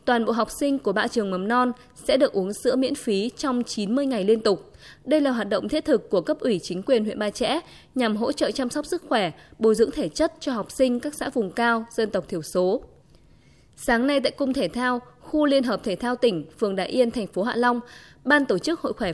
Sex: female